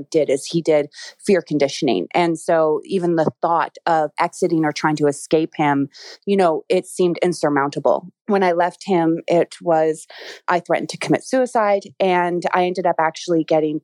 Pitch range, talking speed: 155-180 Hz, 175 wpm